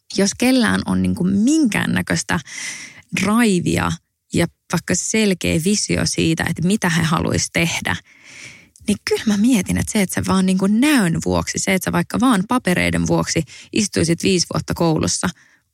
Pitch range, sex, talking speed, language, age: 160-195 Hz, female, 140 wpm, English, 20-39